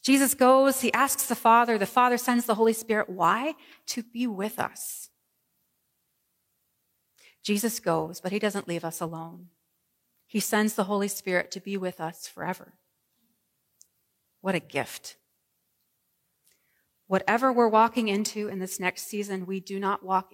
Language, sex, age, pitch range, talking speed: English, female, 30-49, 180-240 Hz, 150 wpm